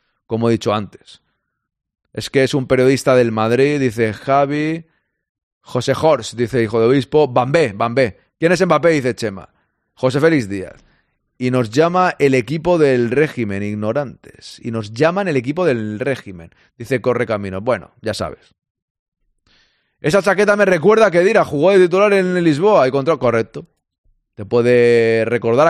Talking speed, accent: 155 wpm, Spanish